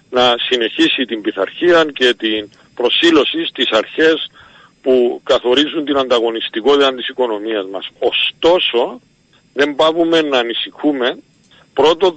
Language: Greek